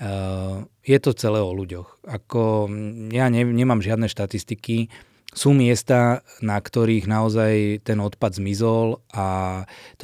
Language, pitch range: Slovak, 105-120 Hz